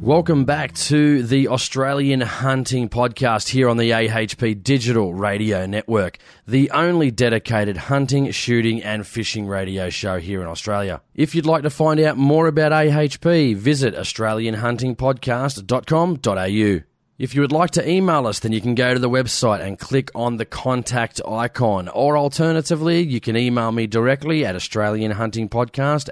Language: English